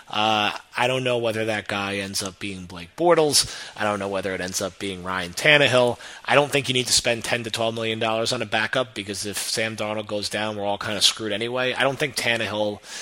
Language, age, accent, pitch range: English, 30-49, American, 105-125 Hz